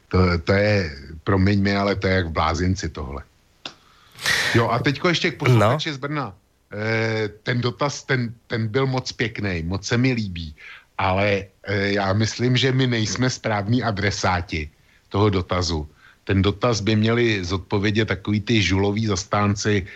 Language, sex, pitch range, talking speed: Slovak, male, 90-110 Hz, 155 wpm